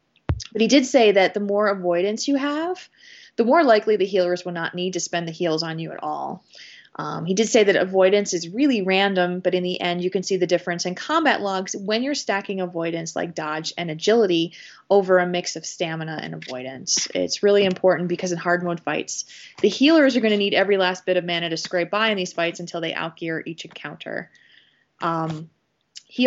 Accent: American